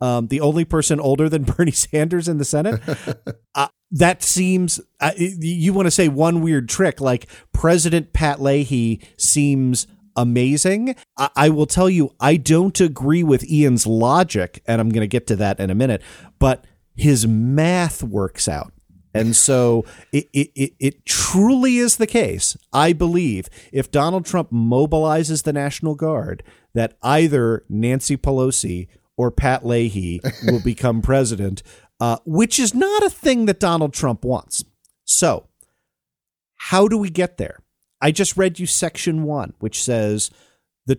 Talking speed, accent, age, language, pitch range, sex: 160 wpm, American, 40-59, English, 120-170 Hz, male